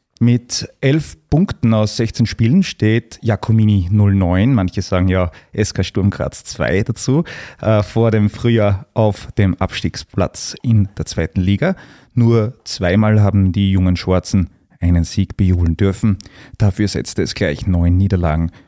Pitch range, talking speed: 95-115 Hz, 140 wpm